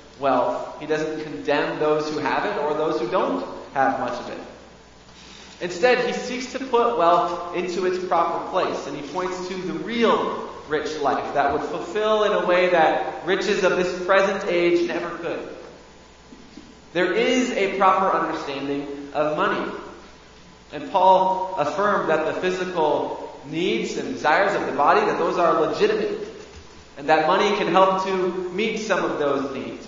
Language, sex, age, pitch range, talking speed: English, male, 30-49, 155-195 Hz, 165 wpm